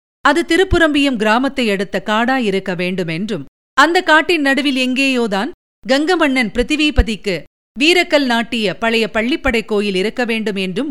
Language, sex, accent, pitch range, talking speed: Tamil, female, native, 215-300 Hz, 115 wpm